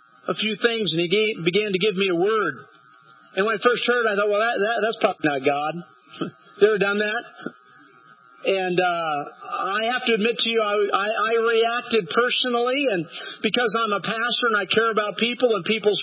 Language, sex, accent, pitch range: English, male, American, 185-230 Hz